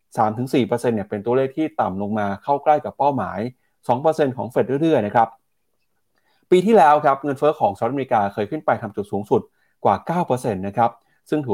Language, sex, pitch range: Thai, male, 105-140 Hz